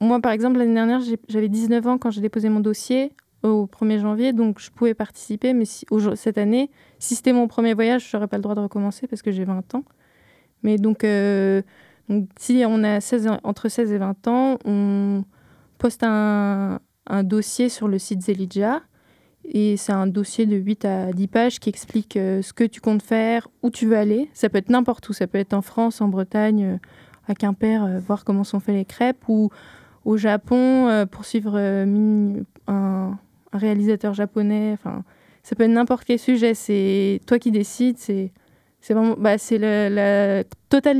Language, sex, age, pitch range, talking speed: French, female, 20-39, 200-230 Hz, 200 wpm